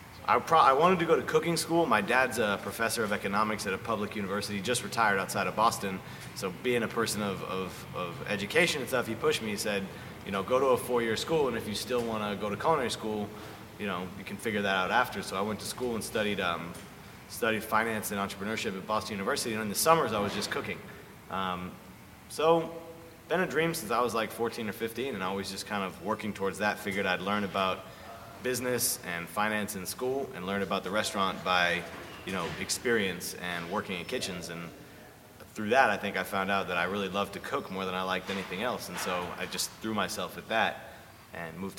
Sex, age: male, 30-49